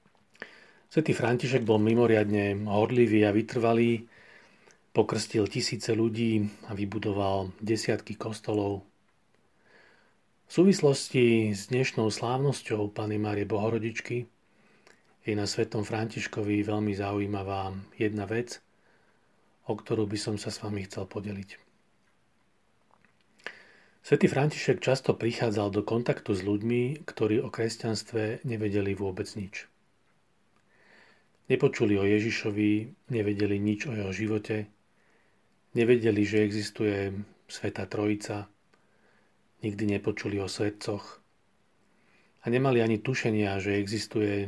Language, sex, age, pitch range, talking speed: Slovak, male, 40-59, 105-115 Hz, 105 wpm